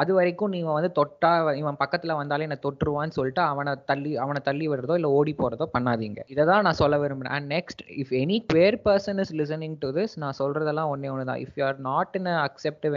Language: Tamil